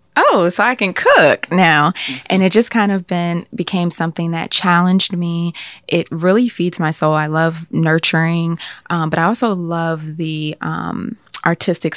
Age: 20-39